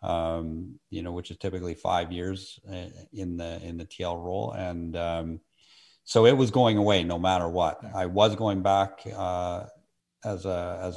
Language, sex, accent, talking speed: English, male, American, 175 wpm